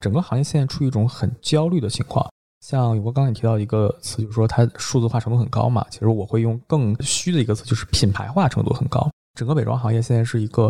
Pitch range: 110-135 Hz